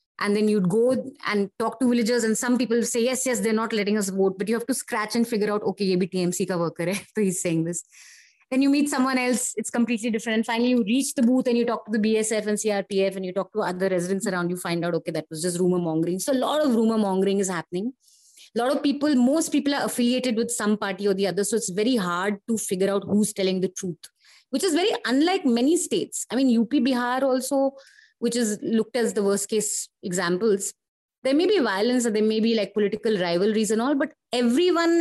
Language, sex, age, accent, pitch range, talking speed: English, female, 30-49, Indian, 195-250 Hz, 245 wpm